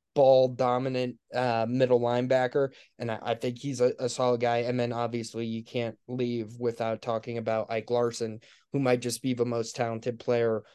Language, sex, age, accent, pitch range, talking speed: English, male, 20-39, American, 120-160 Hz, 185 wpm